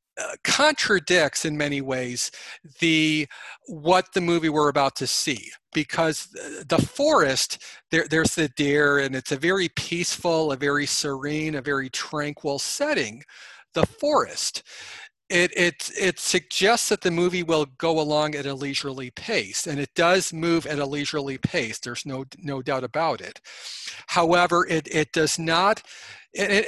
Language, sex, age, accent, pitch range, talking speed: English, male, 40-59, American, 140-175 Hz, 155 wpm